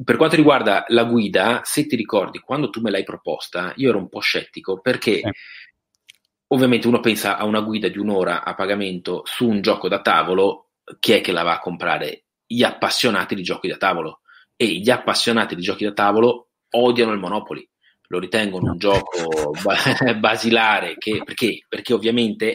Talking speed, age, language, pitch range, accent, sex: 175 wpm, 30-49, Italian, 95-120 Hz, native, male